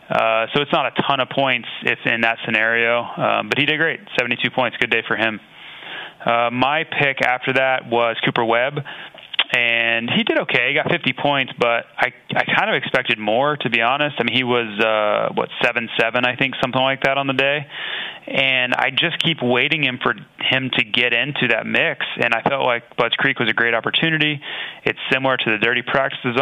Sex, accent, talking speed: male, American, 220 wpm